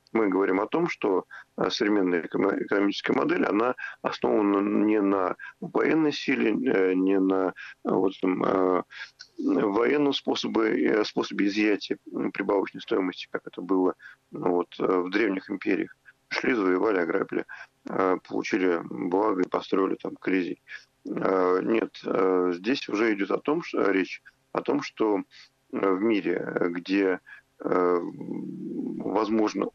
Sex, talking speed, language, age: male, 105 wpm, Russian, 40-59